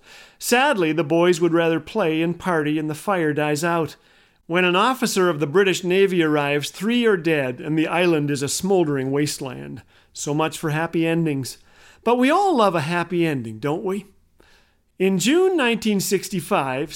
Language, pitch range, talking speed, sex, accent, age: English, 155-195 Hz, 170 wpm, male, American, 40-59